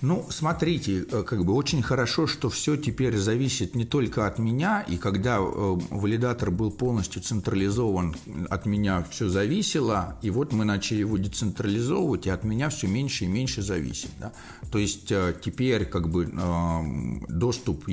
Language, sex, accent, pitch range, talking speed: Russian, male, native, 90-120 Hz, 155 wpm